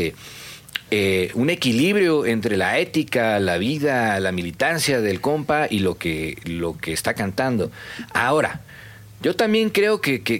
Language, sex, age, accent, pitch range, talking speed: Spanish, male, 40-59, Mexican, 110-155 Hz, 145 wpm